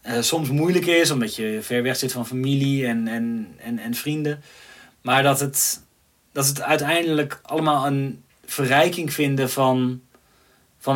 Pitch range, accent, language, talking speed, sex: 120-140 Hz, Dutch, Dutch, 155 wpm, male